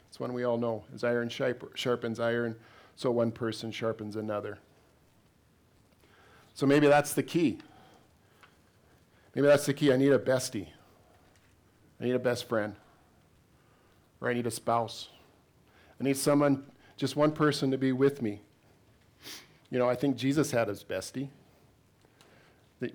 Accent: American